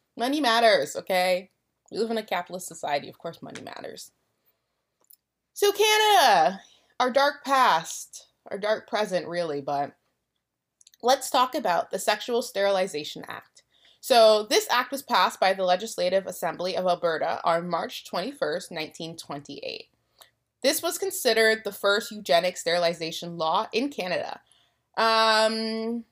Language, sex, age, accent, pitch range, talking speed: English, female, 20-39, American, 180-230 Hz, 130 wpm